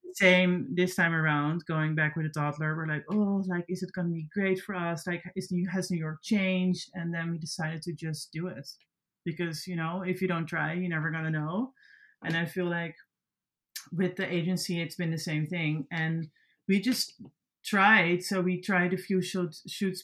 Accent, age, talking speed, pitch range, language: Dutch, 30-49, 205 wpm, 160-185 Hz, English